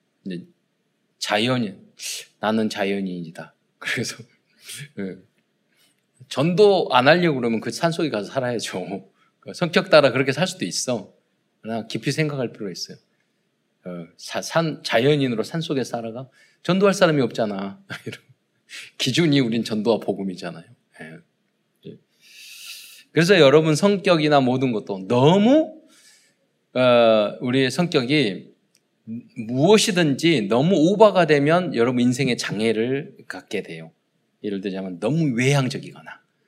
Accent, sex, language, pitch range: native, male, Korean, 115-170 Hz